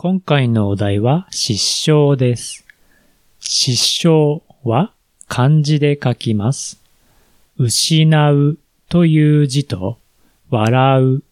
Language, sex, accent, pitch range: Japanese, male, native, 115-165 Hz